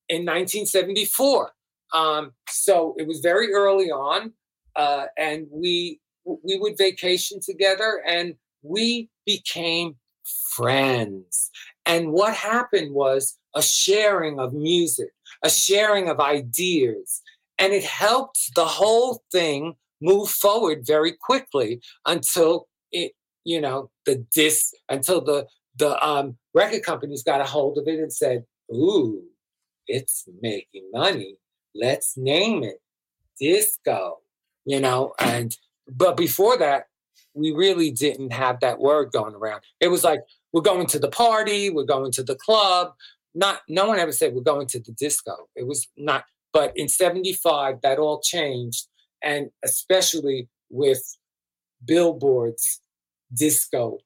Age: 50-69